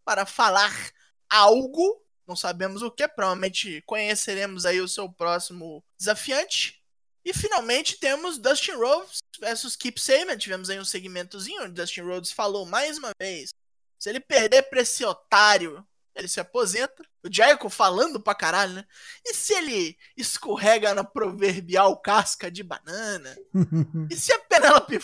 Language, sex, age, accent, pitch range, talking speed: Portuguese, male, 20-39, Brazilian, 195-305 Hz, 145 wpm